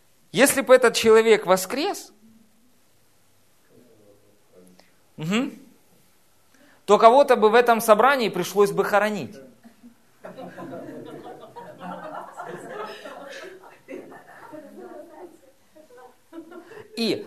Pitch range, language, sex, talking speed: 195-265 Hz, Russian, male, 50 wpm